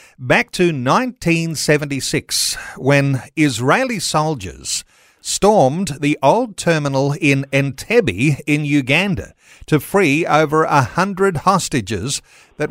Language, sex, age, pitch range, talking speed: English, male, 50-69, 135-170 Hz, 100 wpm